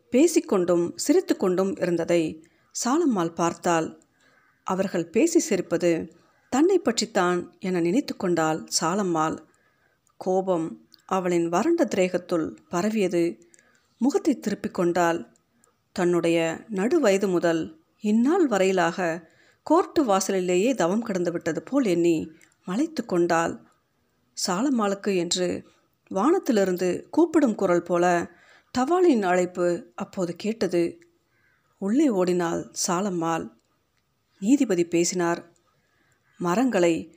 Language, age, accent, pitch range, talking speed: Tamil, 50-69, native, 170-225 Hz, 80 wpm